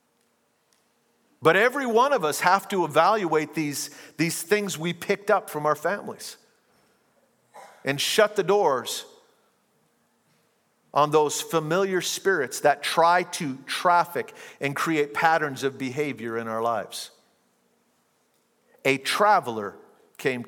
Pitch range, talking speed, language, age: 145-195 Hz, 115 wpm, English, 50-69